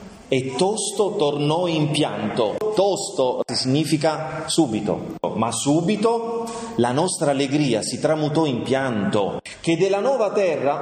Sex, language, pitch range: male, Italian, 130-185 Hz